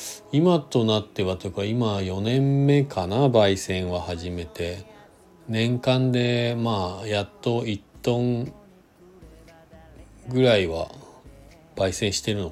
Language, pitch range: Japanese, 90-120 Hz